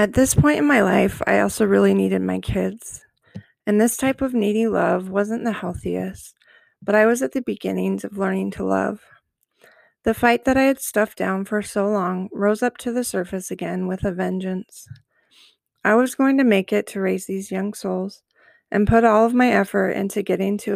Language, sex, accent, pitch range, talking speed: English, female, American, 185-225 Hz, 200 wpm